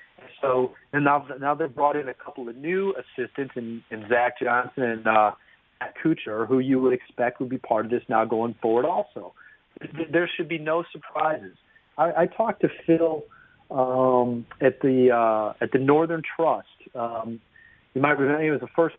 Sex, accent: male, American